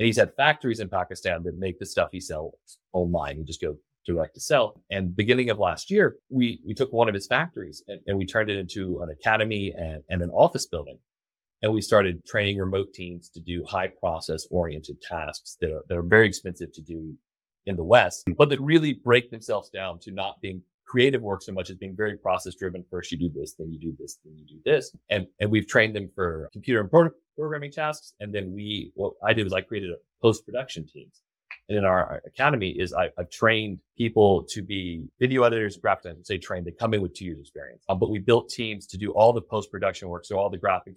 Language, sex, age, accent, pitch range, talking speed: English, male, 30-49, American, 90-110 Hz, 235 wpm